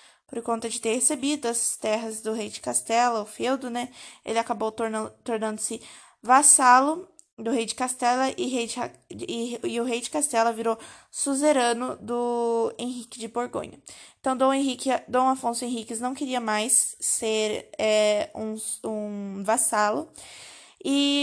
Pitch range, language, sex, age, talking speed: 225-265 Hz, Portuguese, female, 20-39, 145 wpm